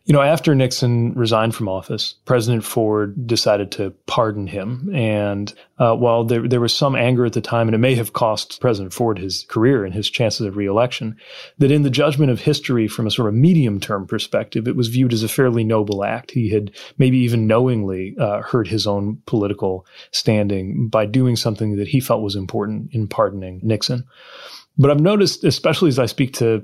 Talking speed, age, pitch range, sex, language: 200 wpm, 30-49, 100-125 Hz, male, English